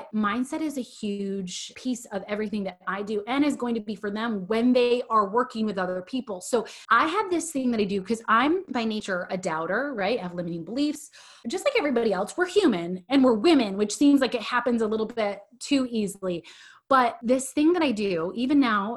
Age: 30-49